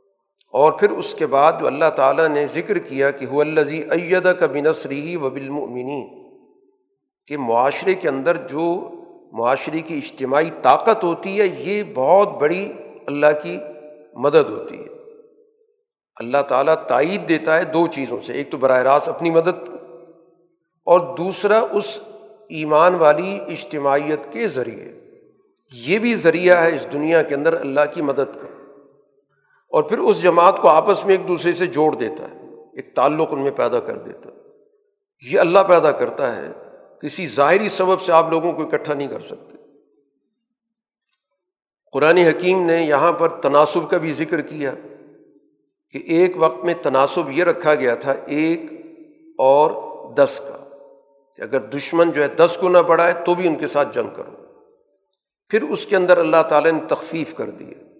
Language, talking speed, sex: Urdu, 160 wpm, male